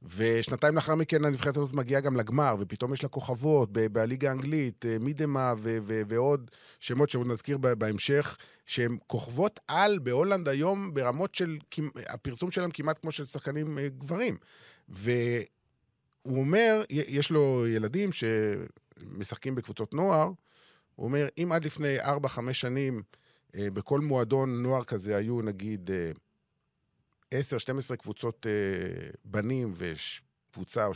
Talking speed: 130 wpm